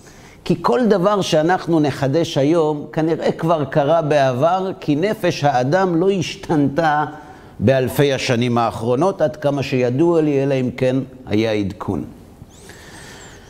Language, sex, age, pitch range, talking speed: Hebrew, male, 50-69, 130-175 Hz, 120 wpm